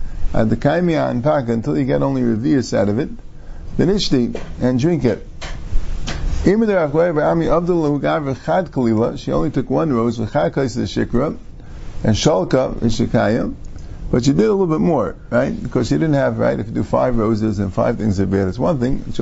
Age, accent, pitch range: 50-69, American, 100-140 Hz